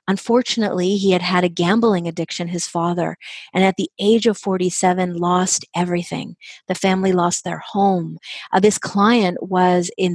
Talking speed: 160 wpm